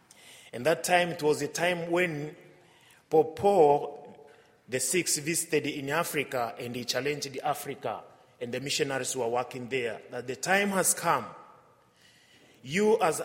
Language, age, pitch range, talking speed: English, 30-49, 150-195 Hz, 140 wpm